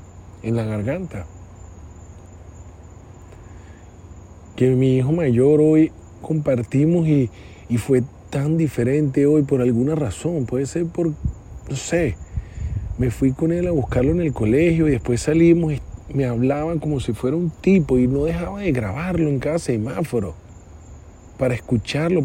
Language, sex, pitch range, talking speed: Spanish, male, 105-155 Hz, 145 wpm